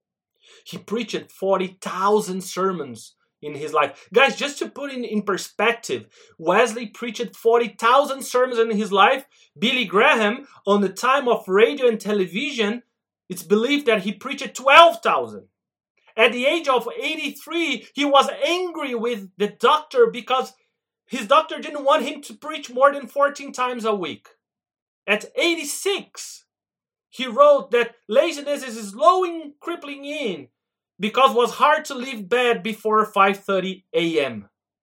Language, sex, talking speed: English, male, 140 wpm